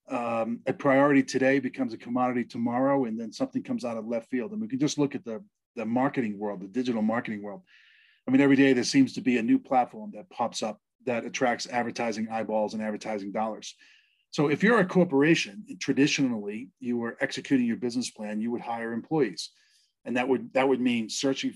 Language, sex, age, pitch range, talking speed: English, male, 40-59, 120-200 Hz, 205 wpm